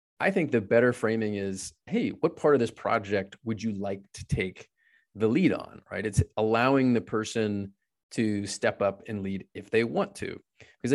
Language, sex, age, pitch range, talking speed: English, male, 30-49, 105-130 Hz, 190 wpm